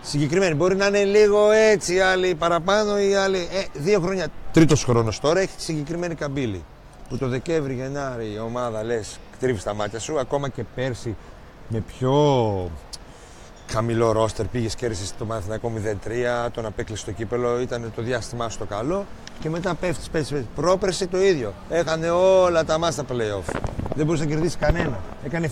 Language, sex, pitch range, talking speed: Greek, male, 110-160 Hz, 170 wpm